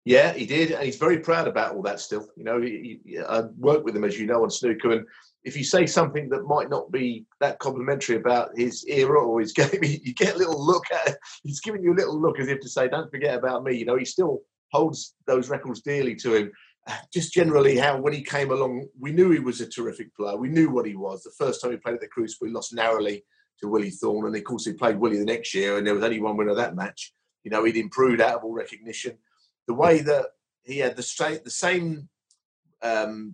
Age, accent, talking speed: 30-49, British, 250 wpm